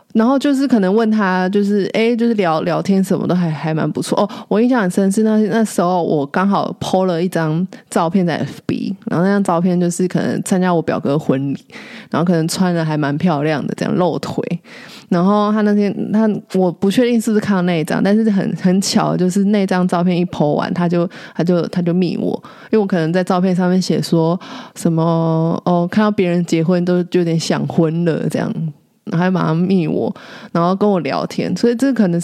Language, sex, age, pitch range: Chinese, female, 20-39, 175-215 Hz